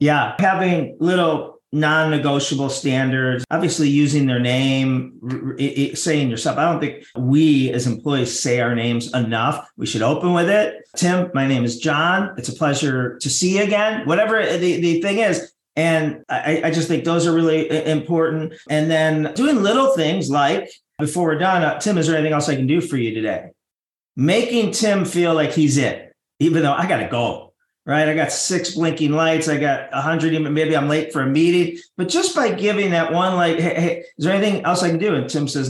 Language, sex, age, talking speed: English, male, 40-59, 210 wpm